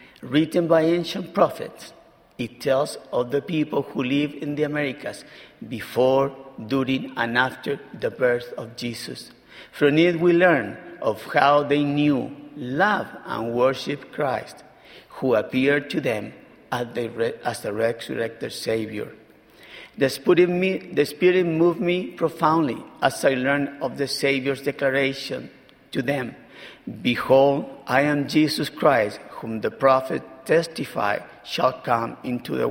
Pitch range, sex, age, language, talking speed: 130-165 Hz, male, 50-69, English, 125 wpm